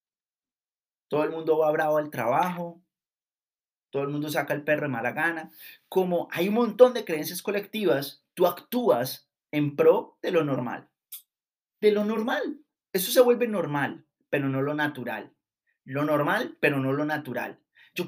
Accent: Colombian